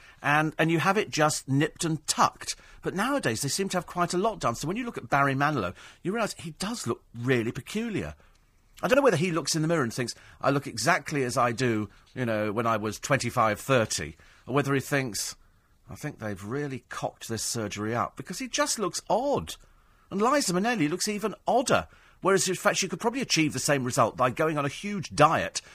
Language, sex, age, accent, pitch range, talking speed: English, male, 40-59, British, 115-175 Hz, 225 wpm